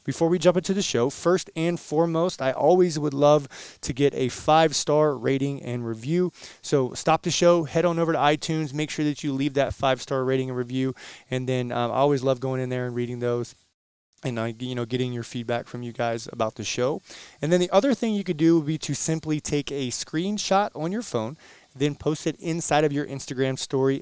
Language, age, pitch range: English, 20-39, 115-150 Hz